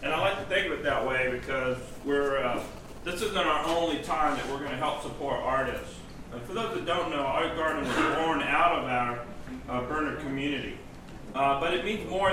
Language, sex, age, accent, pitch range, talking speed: English, male, 40-59, American, 130-160 Hz, 220 wpm